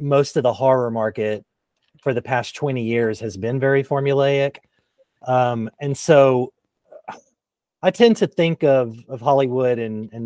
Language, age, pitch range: English, 30-49, 115-145 Hz